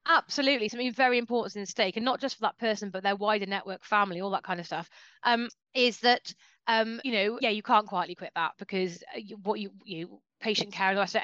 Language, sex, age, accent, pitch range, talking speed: English, female, 30-49, British, 185-235 Hz, 225 wpm